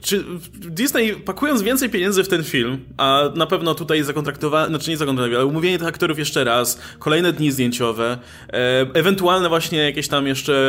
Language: Polish